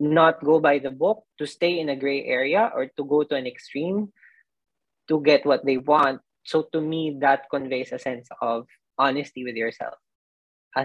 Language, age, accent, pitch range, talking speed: Filipino, 20-39, native, 130-175 Hz, 190 wpm